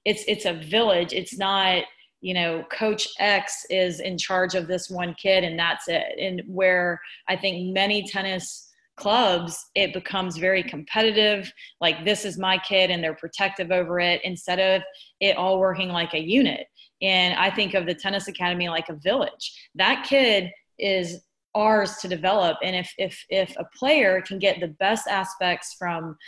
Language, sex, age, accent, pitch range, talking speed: English, female, 30-49, American, 175-195 Hz, 175 wpm